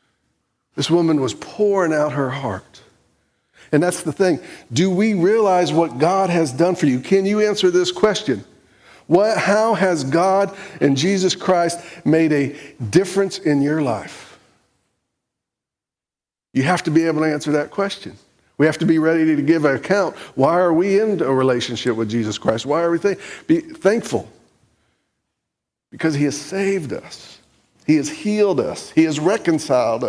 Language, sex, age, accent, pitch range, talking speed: English, male, 50-69, American, 145-195 Hz, 165 wpm